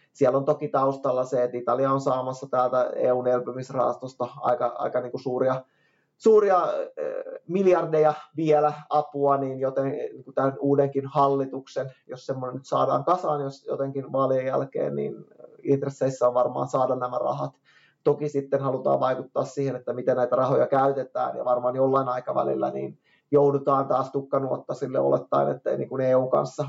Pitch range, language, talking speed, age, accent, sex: 130-145 Hz, Finnish, 145 wpm, 20-39, native, male